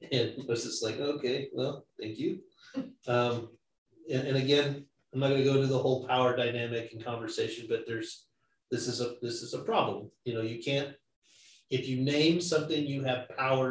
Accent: American